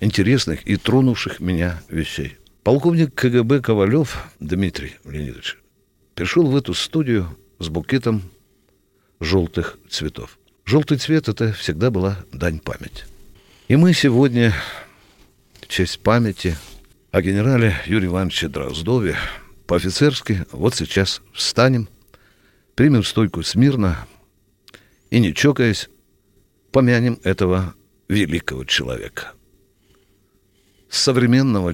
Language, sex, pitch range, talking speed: Russian, male, 90-120 Hz, 95 wpm